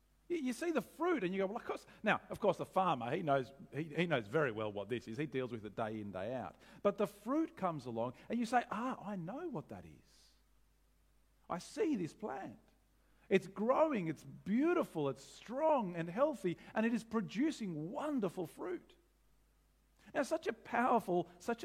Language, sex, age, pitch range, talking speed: English, male, 50-69, 140-225 Hz, 195 wpm